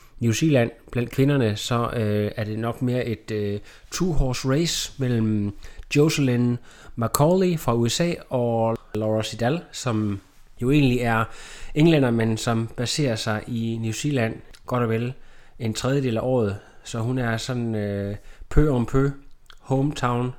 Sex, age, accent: male, 30-49, native